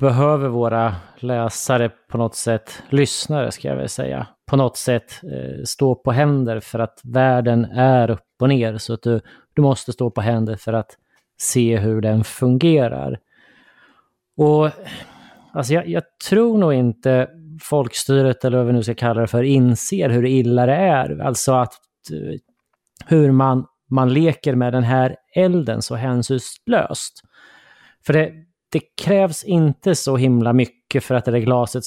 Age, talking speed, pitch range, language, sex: 30-49, 155 wpm, 120-150 Hz, Swedish, male